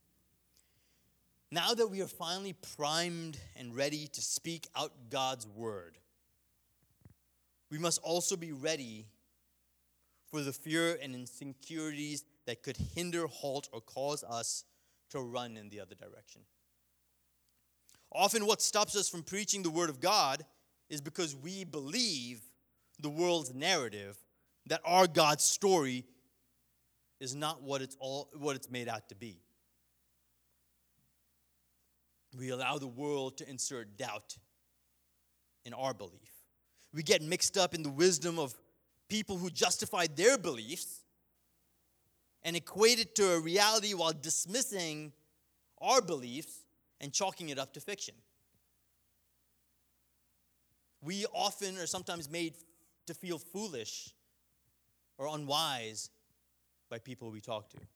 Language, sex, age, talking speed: English, male, 30-49, 125 wpm